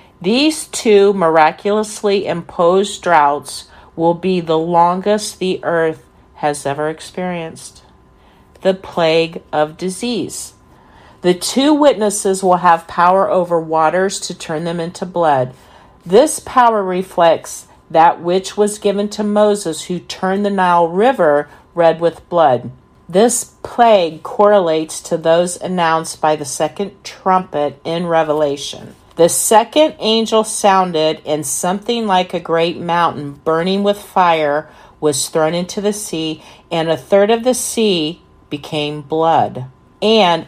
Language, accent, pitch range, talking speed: English, American, 160-200 Hz, 130 wpm